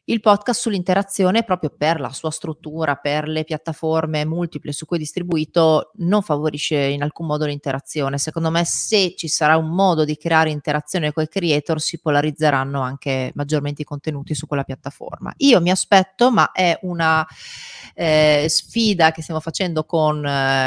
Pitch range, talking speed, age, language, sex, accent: 155-195 Hz, 165 wpm, 30-49, Italian, female, native